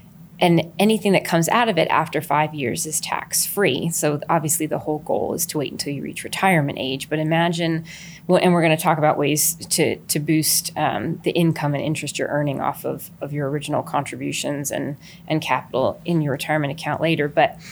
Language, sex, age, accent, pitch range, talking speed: English, female, 20-39, American, 155-180 Hz, 200 wpm